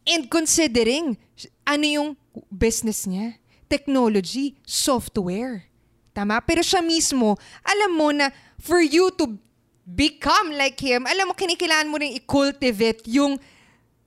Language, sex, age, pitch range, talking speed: Filipino, female, 20-39, 205-290 Hz, 120 wpm